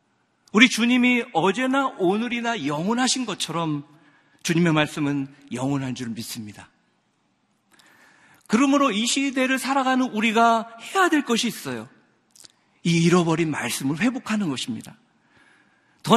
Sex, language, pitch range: male, Korean, 170-260 Hz